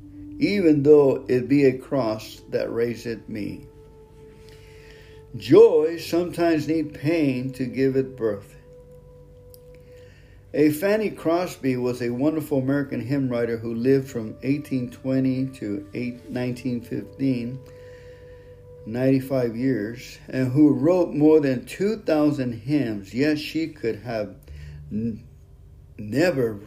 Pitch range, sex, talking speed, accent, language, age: 115-150 Hz, male, 105 wpm, American, English, 50-69